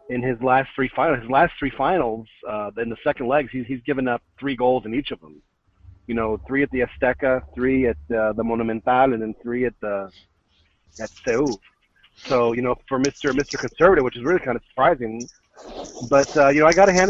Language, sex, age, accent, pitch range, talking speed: English, male, 40-59, American, 115-140 Hz, 220 wpm